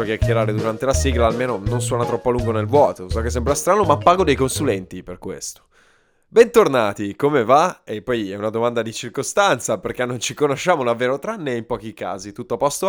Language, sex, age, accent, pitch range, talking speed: Italian, male, 20-39, native, 115-150 Hz, 205 wpm